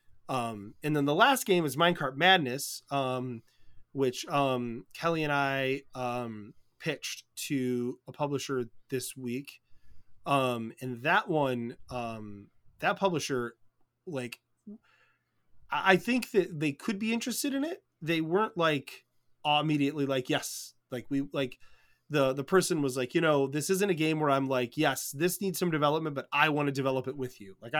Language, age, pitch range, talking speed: English, 20-39, 125-175 Hz, 165 wpm